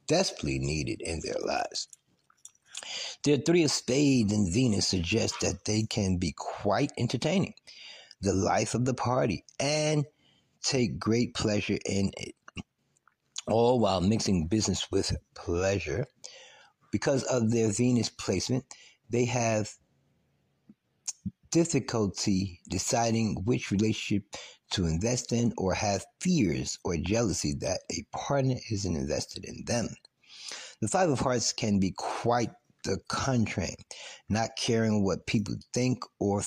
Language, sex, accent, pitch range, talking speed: English, male, American, 100-125 Hz, 125 wpm